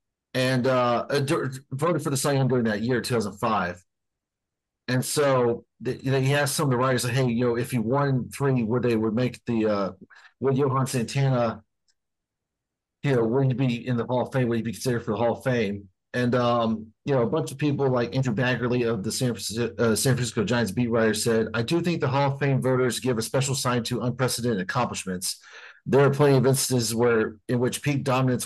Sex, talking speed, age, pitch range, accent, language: male, 215 wpm, 40-59, 115-135 Hz, American, English